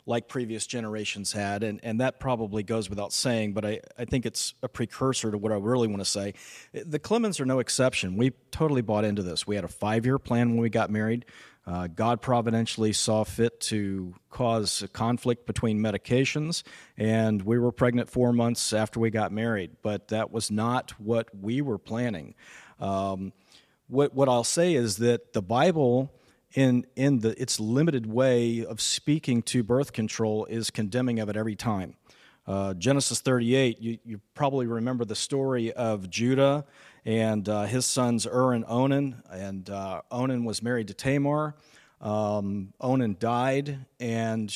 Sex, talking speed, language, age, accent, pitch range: male, 170 wpm, English, 40-59, American, 110-130 Hz